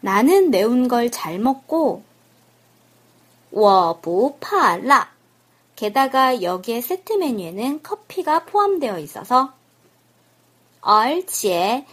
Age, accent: 20-39, native